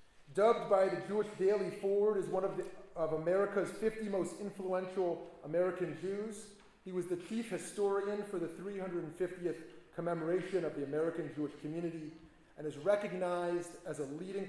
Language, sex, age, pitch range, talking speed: English, male, 30-49, 160-200 Hz, 155 wpm